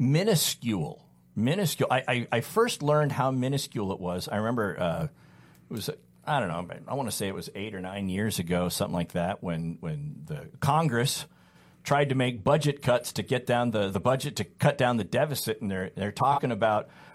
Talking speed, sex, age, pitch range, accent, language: 205 wpm, male, 40-59, 105-155 Hz, American, English